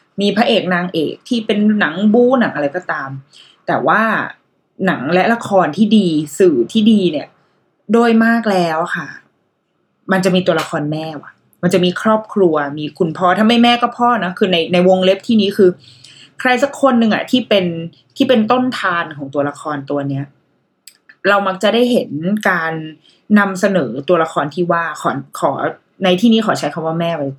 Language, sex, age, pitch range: Thai, female, 20-39, 180-245 Hz